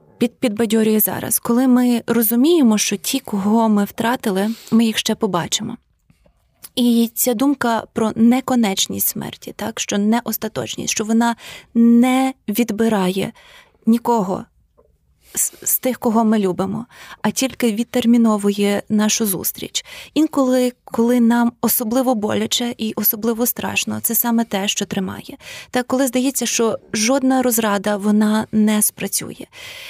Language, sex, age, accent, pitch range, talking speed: Ukrainian, female, 20-39, native, 200-240 Hz, 125 wpm